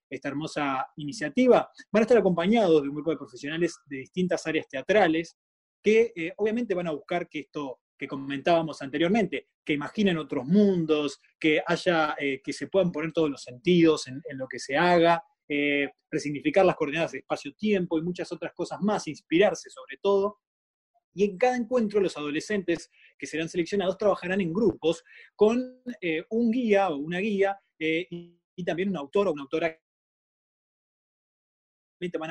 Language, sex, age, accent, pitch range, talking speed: Spanish, male, 20-39, Argentinian, 150-205 Hz, 165 wpm